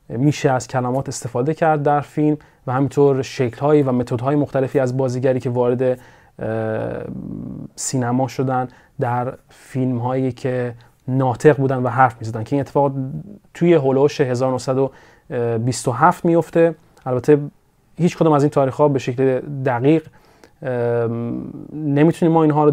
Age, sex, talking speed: 30-49, male, 125 wpm